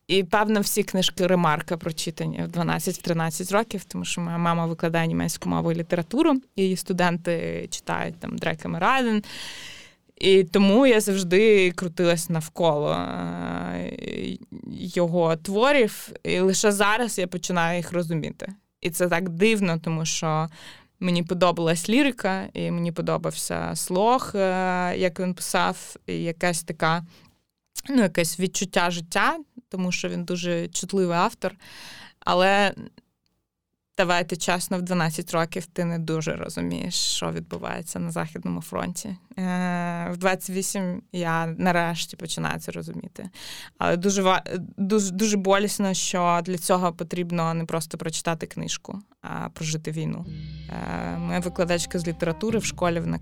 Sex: female